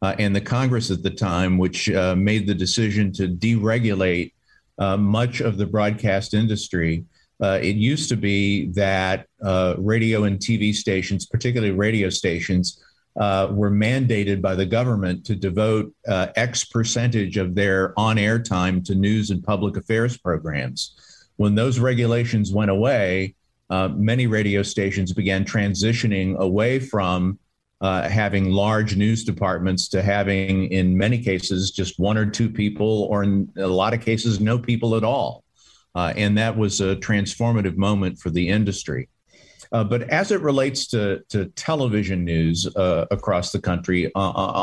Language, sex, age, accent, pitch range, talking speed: English, male, 50-69, American, 95-110 Hz, 155 wpm